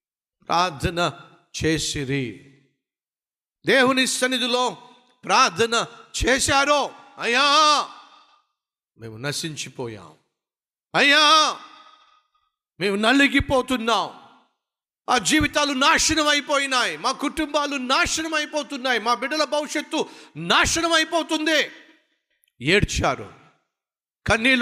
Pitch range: 170-260 Hz